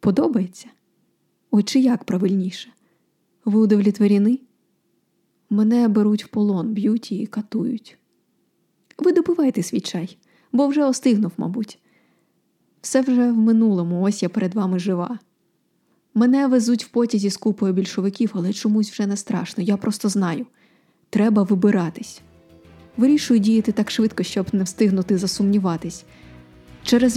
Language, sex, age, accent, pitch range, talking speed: Ukrainian, female, 20-39, native, 190-225 Hz, 125 wpm